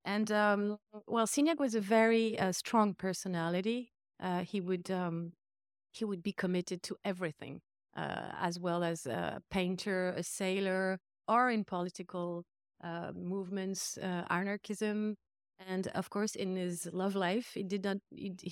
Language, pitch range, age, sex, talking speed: English, 175-200 Hz, 30-49, female, 145 wpm